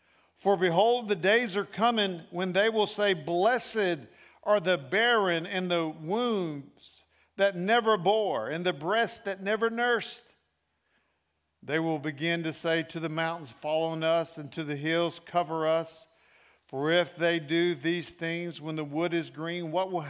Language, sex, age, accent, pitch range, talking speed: English, male, 50-69, American, 155-190 Hz, 165 wpm